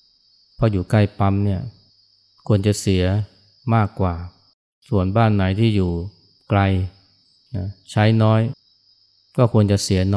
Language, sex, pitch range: Thai, male, 95-110 Hz